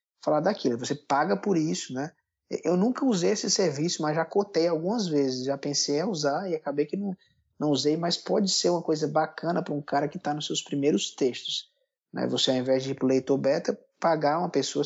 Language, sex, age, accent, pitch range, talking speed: Portuguese, male, 20-39, Brazilian, 140-185 Hz, 220 wpm